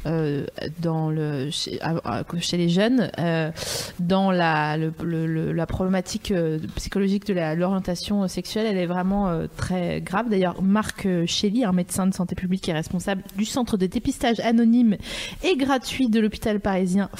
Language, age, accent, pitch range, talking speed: French, 20-39, French, 170-215 Hz, 145 wpm